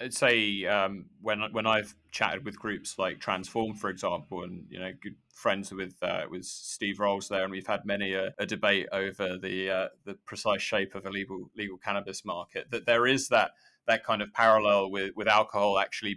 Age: 20-39